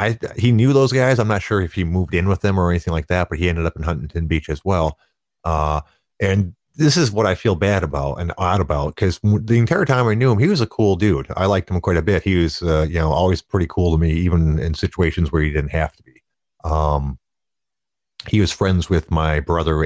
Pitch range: 80-100 Hz